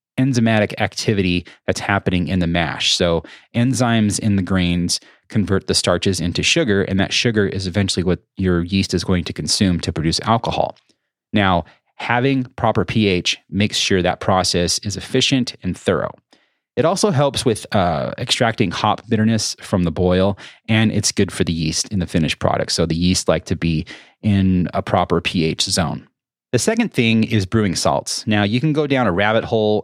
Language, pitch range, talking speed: English, 90-115 Hz, 180 wpm